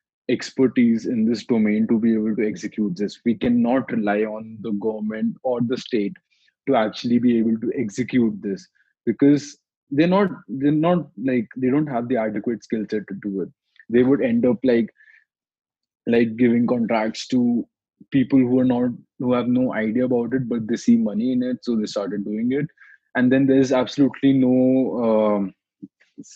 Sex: male